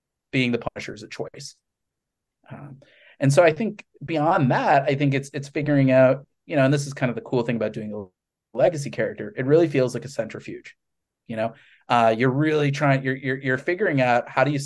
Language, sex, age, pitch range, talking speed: English, male, 30-49, 115-140 Hz, 220 wpm